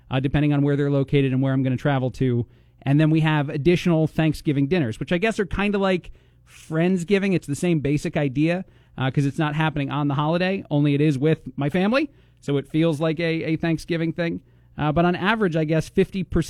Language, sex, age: English, male, 40-59